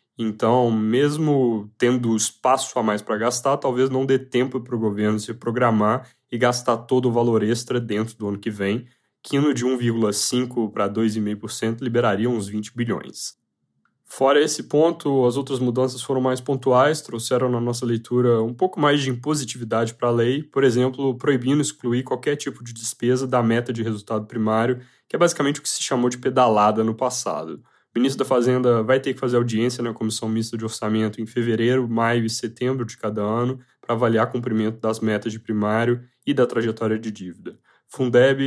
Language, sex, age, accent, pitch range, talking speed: Portuguese, male, 10-29, Brazilian, 110-130 Hz, 185 wpm